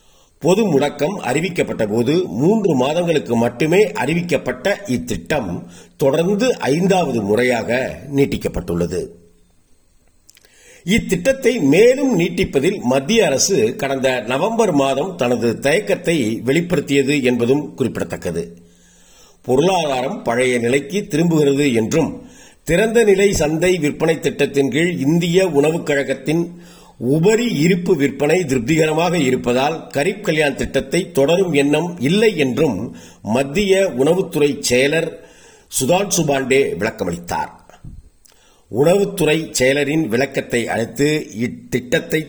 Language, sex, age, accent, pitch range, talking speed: Tamil, male, 50-69, native, 125-175 Hz, 85 wpm